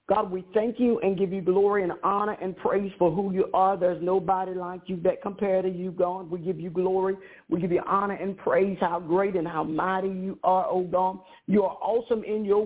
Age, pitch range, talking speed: 50-69, 185-230 Hz, 230 wpm